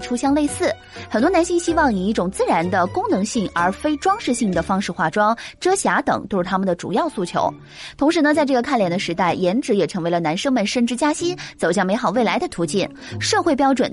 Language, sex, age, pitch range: Chinese, female, 20-39, 185-280 Hz